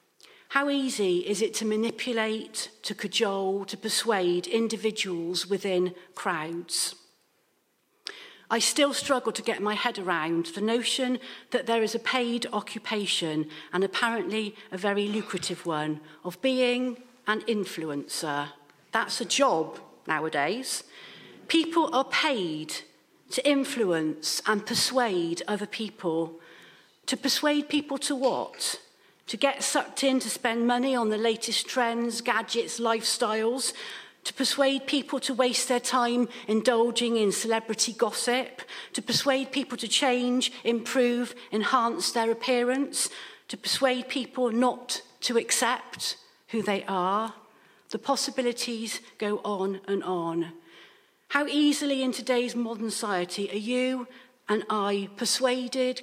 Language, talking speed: English, 125 wpm